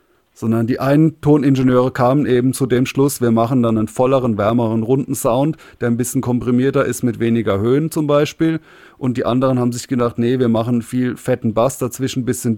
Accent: German